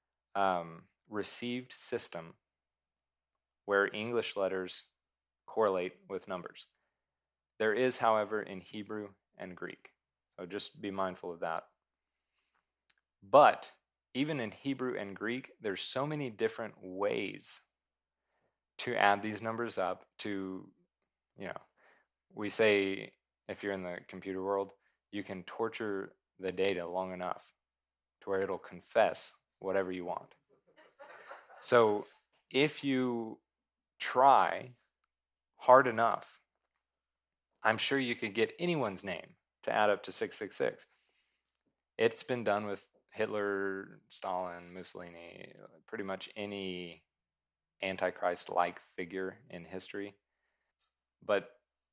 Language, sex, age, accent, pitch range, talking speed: English, male, 30-49, American, 90-110 Hz, 110 wpm